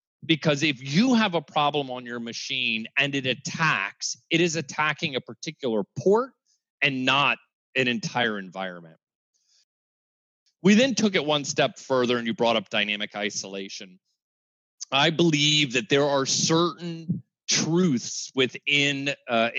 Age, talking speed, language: 30-49, 140 wpm, English